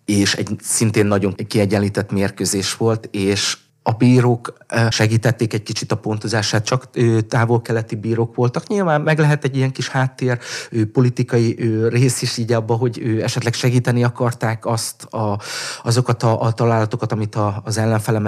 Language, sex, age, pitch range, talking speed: Hungarian, male, 30-49, 110-125 Hz, 150 wpm